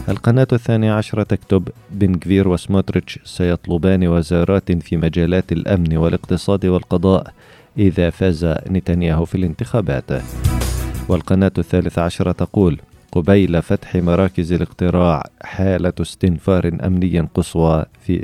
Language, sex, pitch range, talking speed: Arabic, male, 85-95 Hz, 100 wpm